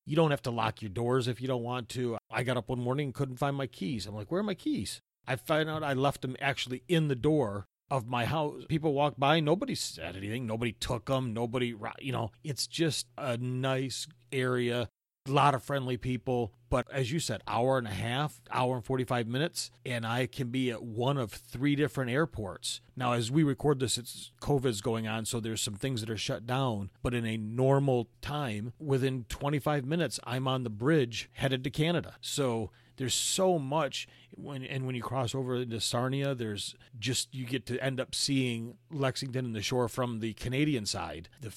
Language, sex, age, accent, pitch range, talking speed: English, male, 40-59, American, 115-135 Hz, 210 wpm